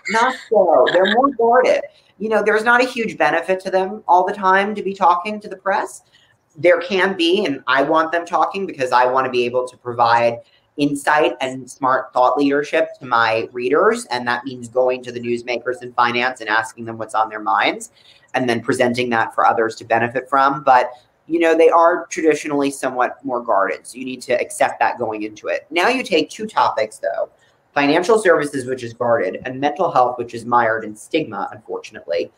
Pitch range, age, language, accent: 125-175 Hz, 40-59, English, American